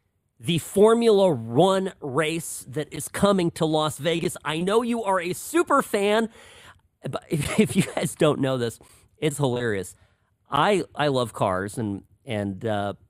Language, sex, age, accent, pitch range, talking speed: English, male, 40-59, American, 110-160 Hz, 155 wpm